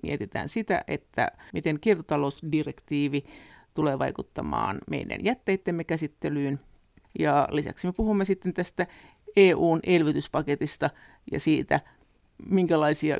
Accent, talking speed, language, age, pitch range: native, 90 wpm, Finnish, 50-69, 135-175 Hz